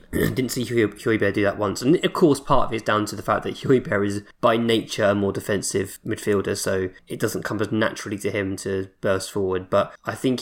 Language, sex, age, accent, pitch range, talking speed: English, male, 20-39, British, 100-120 Hz, 235 wpm